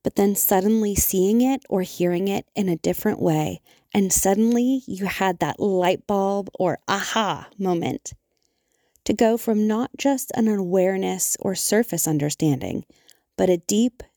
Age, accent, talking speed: 30-49, American, 150 wpm